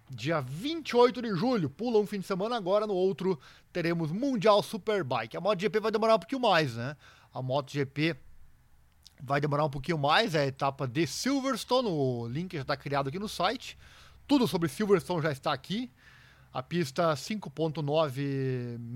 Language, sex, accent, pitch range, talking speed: Portuguese, male, Brazilian, 135-195 Hz, 165 wpm